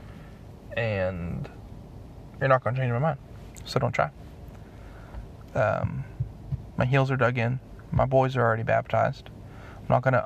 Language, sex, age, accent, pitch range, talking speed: English, male, 20-39, American, 115-130 Hz, 140 wpm